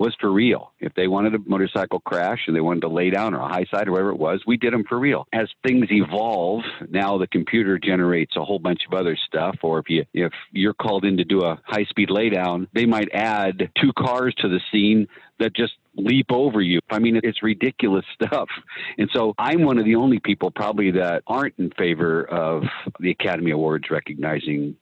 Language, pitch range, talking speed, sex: English, 85-110 Hz, 220 wpm, male